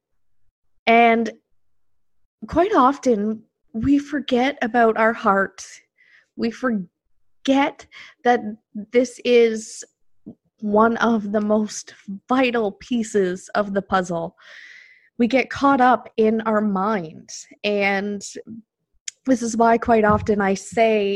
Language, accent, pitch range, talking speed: English, American, 195-230 Hz, 105 wpm